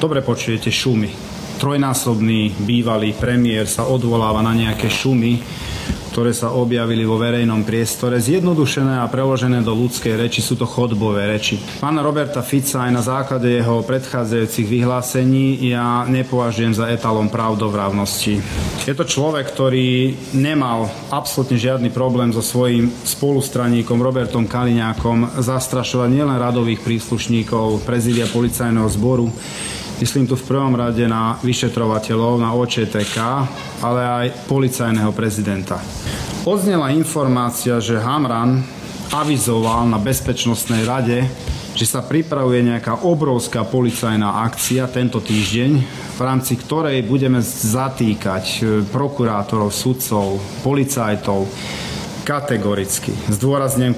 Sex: male